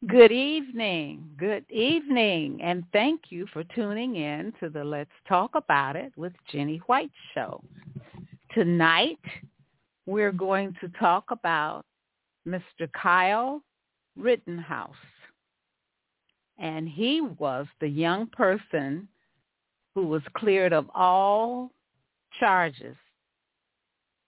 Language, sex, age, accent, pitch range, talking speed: English, female, 50-69, American, 155-210 Hz, 100 wpm